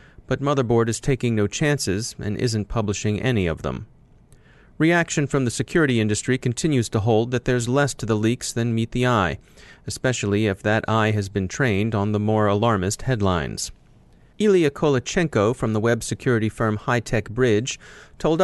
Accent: American